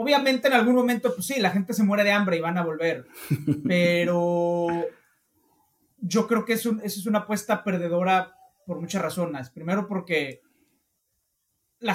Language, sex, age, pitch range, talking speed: Spanish, male, 30-49, 150-195 Hz, 160 wpm